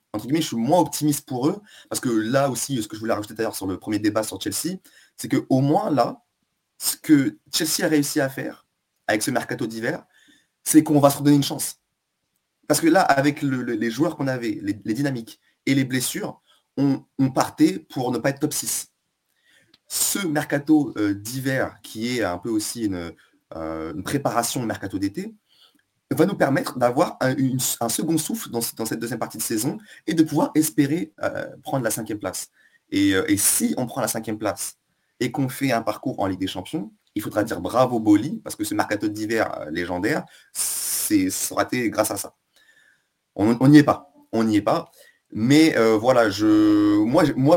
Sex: male